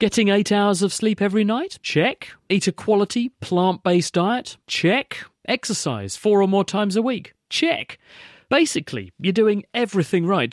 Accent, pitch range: British, 130-200 Hz